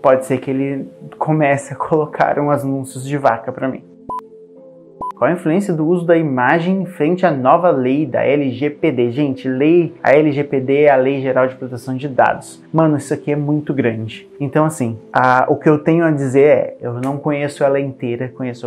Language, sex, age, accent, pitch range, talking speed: Portuguese, male, 20-39, Brazilian, 130-150 Hz, 190 wpm